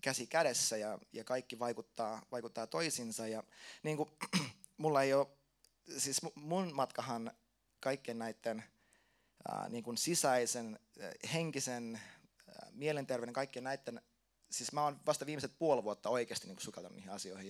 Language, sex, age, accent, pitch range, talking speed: Finnish, male, 20-39, native, 115-140 Hz, 130 wpm